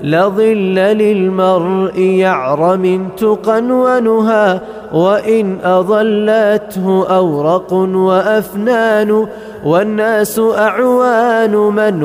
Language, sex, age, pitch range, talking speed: Arabic, male, 30-49, 185-215 Hz, 55 wpm